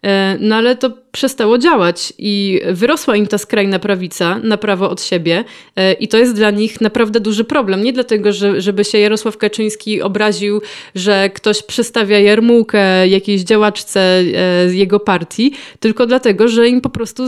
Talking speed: 160 wpm